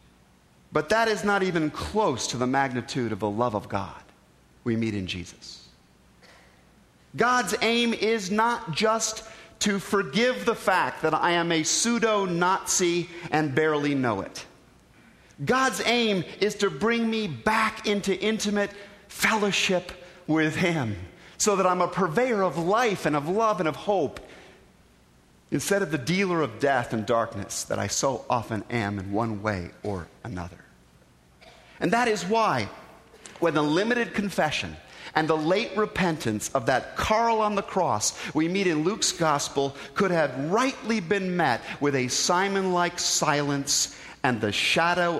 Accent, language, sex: American, English, male